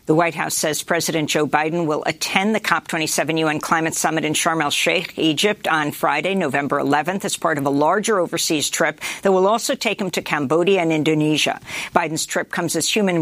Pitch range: 160-195 Hz